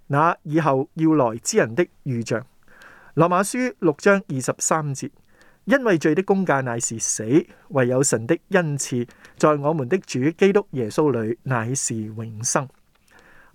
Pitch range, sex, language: 130-185 Hz, male, Chinese